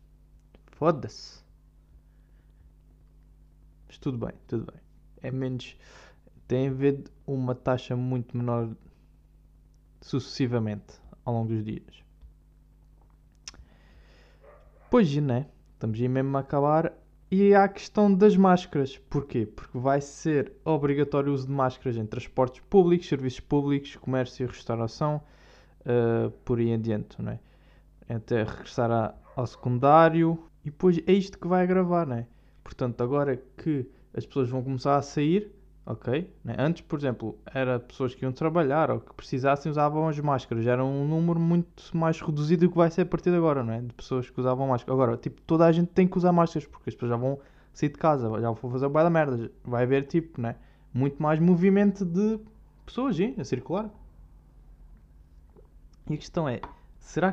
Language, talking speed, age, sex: Portuguese, 160 wpm, 20-39, male